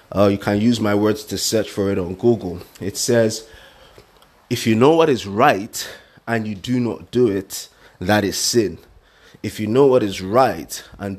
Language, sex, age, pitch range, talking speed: English, male, 30-49, 100-125 Hz, 195 wpm